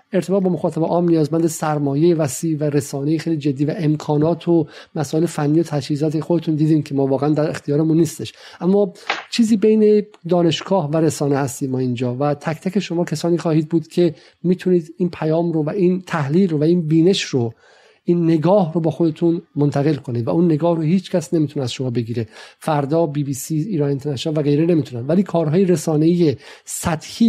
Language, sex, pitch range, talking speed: Persian, male, 145-170 Hz, 185 wpm